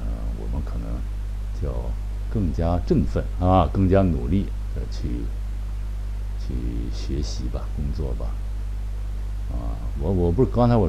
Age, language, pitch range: 60-79, Chinese, 80-100 Hz